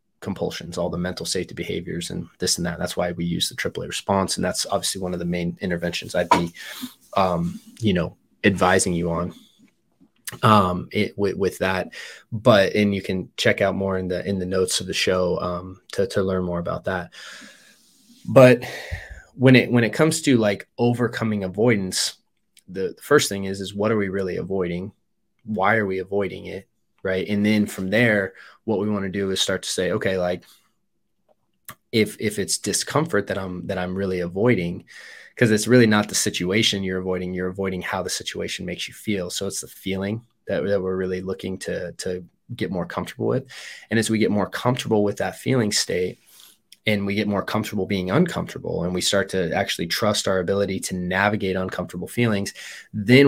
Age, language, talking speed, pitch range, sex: 20-39, English, 195 wpm, 95-110 Hz, male